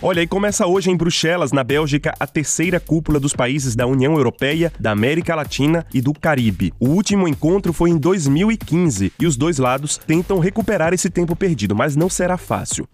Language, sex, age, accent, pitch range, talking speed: Portuguese, male, 20-39, Brazilian, 135-175 Hz, 190 wpm